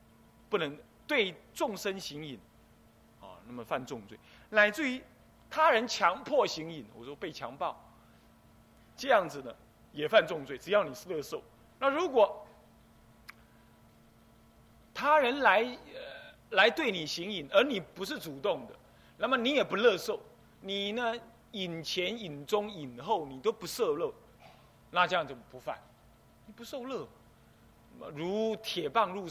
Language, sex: Chinese, male